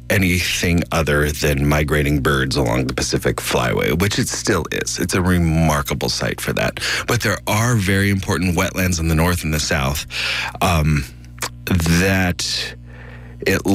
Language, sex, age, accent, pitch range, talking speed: English, male, 30-49, American, 70-95 Hz, 150 wpm